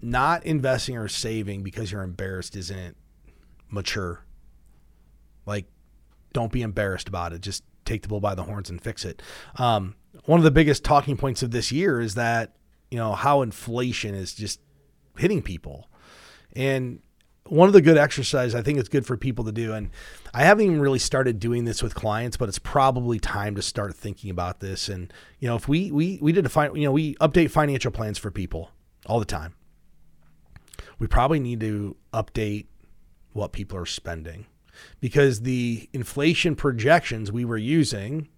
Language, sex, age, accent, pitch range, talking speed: English, male, 30-49, American, 100-145 Hz, 180 wpm